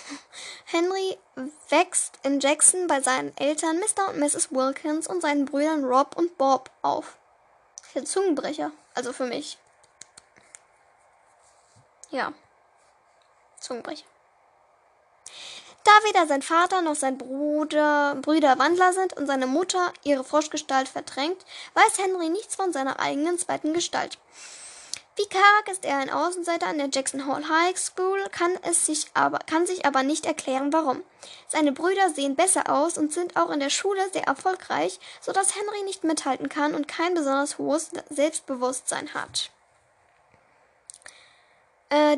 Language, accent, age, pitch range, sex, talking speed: German, German, 10-29, 285-360 Hz, female, 135 wpm